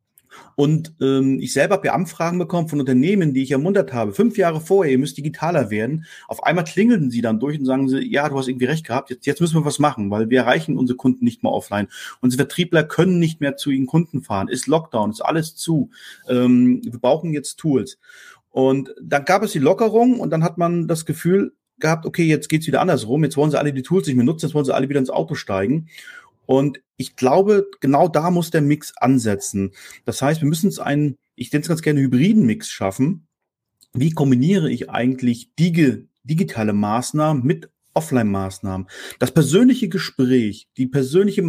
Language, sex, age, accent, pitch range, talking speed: German, male, 30-49, German, 125-165 Hz, 200 wpm